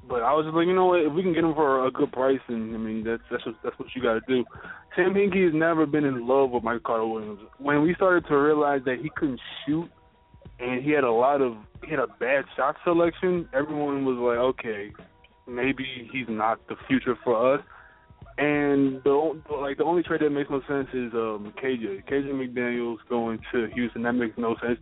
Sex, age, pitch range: male, 20-39, 120-145 Hz